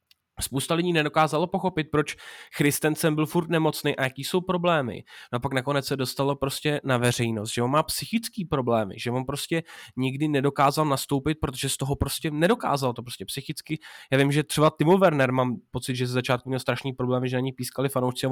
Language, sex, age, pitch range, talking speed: Slovak, male, 20-39, 130-155 Hz, 200 wpm